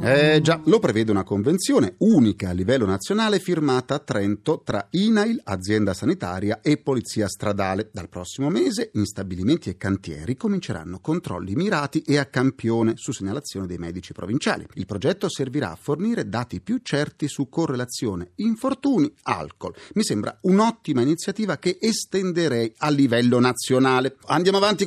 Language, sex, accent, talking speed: Italian, male, native, 145 wpm